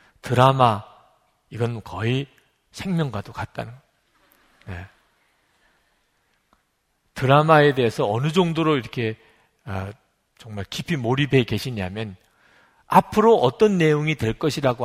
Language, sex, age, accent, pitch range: Korean, male, 40-59, native, 110-160 Hz